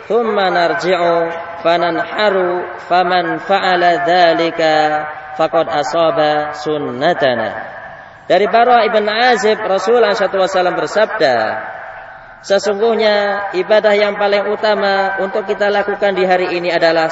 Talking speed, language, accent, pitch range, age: 100 wpm, English, Indonesian, 155-190 Hz, 20-39